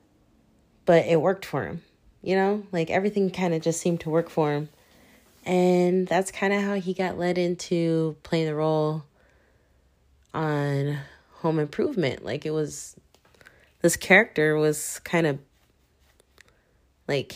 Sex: female